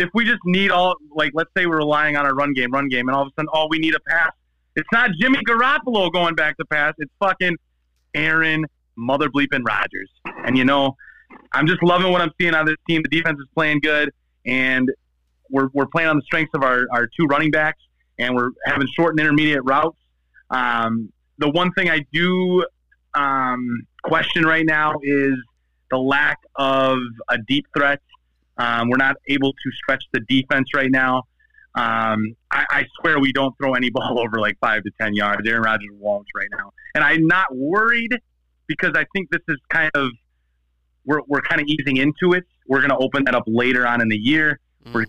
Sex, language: male, English